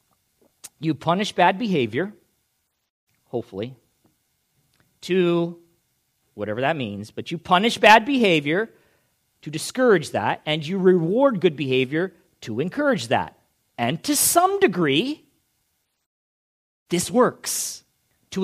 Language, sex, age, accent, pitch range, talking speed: English, male, 40-59, American, 160-245 Hz, 105 wpm